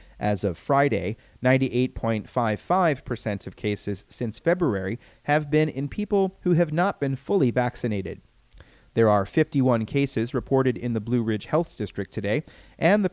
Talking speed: 145 wpm